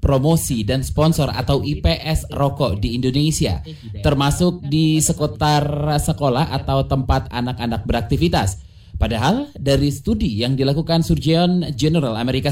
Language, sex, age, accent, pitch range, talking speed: Indonesian, male, 30-49, native, 120-165 Hz, 115 wpm